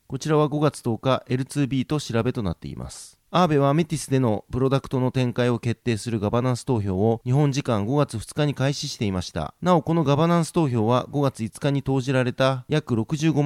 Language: Japanese